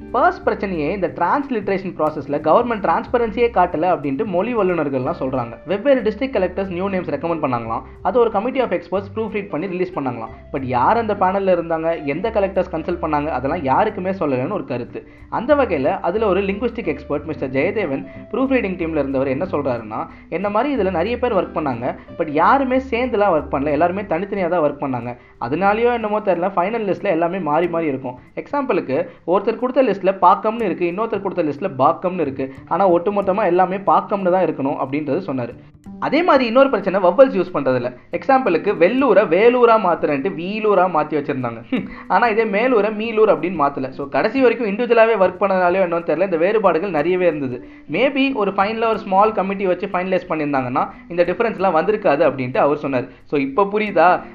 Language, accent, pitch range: Tamil, native, 160-215 Hz